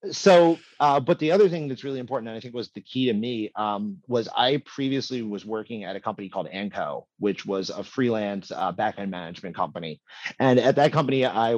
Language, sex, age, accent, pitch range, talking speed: English, male, 30-49, American, 105-130 Hz, 210 wpm